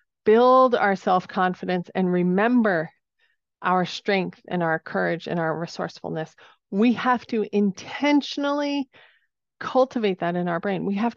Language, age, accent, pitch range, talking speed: English, 40-59, American, 190-250 Hz, 130 wpm